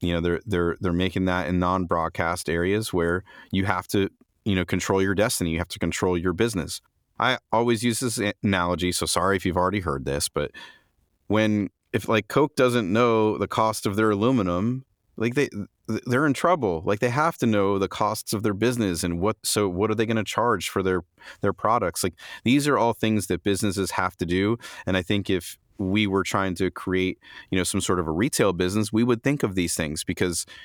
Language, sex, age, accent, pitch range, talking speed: English, male, 30-49, American, 90-110 Hz, 220 wpm